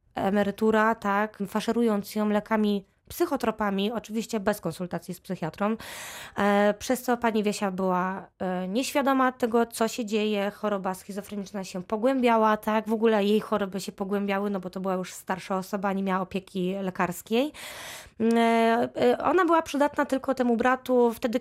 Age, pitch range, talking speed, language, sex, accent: 20-39, 205-240 Hz, 140 wpm, Polish, female, native